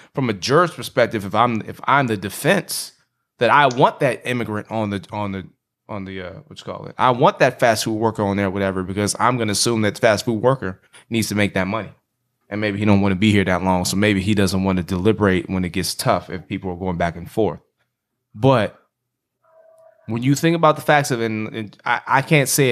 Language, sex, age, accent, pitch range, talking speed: English, male, 20-39, American, 105-145 Hz, 245 wpm